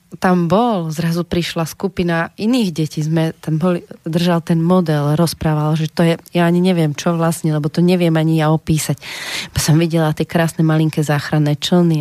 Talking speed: 180 wpm